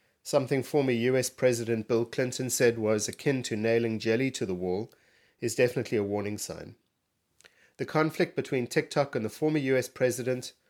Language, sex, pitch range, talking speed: English, male, 115-140 Hz, 165 wpm